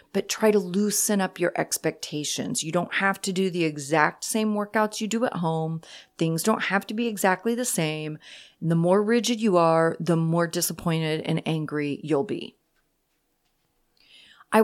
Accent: American